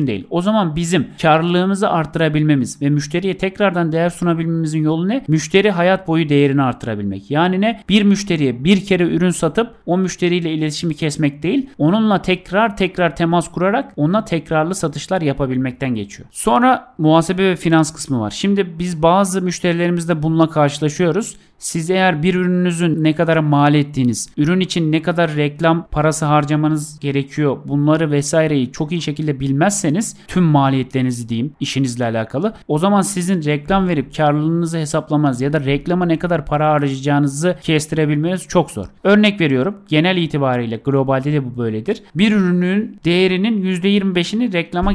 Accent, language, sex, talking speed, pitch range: native, Turkish, male, 145 wpm, 145-180 Hz